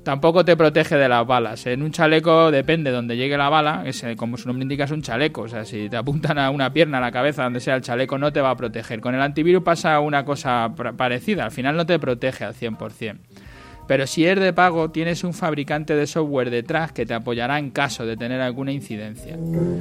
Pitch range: 125-155 Hz